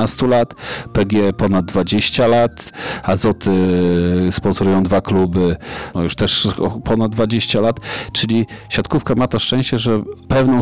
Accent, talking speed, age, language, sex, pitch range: native, 125 wpm, 40-59, Polish, male, 100-120 Hz